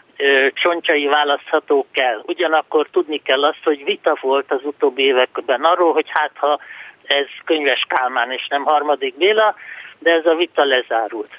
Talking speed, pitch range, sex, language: 155 wpm, 145-175 Hz, male, Hungarian